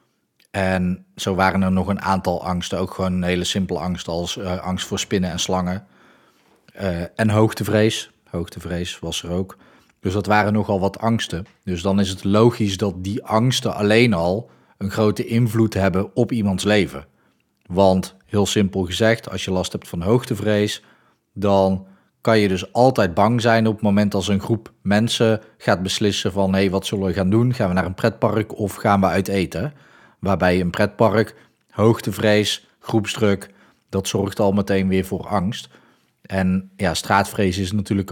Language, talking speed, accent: Dutch, 175 wpm, Dutch